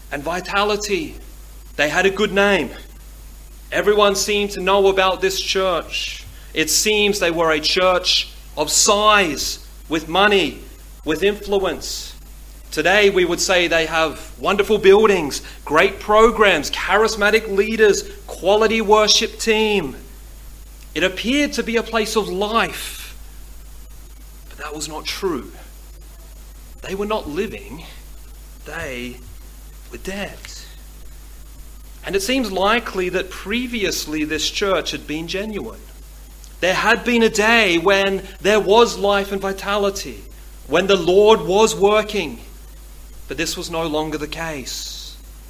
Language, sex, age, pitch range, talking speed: English, male, 30-49, 130-205 Hz, 125 wpm